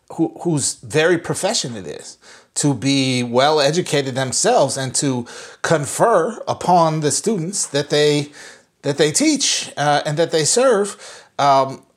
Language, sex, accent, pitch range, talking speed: English, male, American, 130-165 Hz, 135 wpm